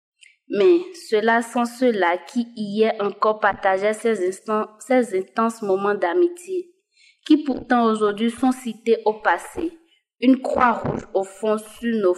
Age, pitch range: 20-39, 190-295 Hz